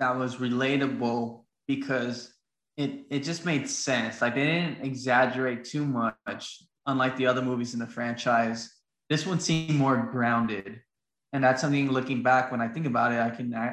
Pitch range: 120-135 Hz